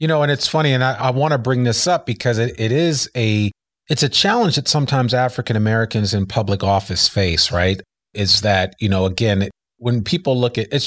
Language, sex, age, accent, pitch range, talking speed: English, male, 40-59, American, 110-145 Hz, 220 wpm